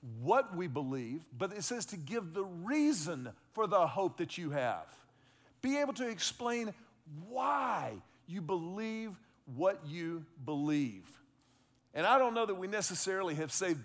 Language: English